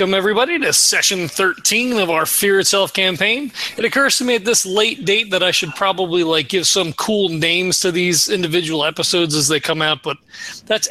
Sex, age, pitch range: male, 30-49, 170-225 Hz